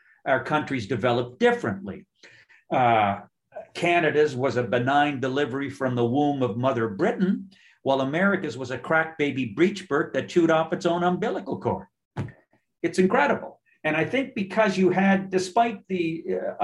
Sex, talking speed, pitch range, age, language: male, 150 wpm, 120-165 Hz, 50-69, English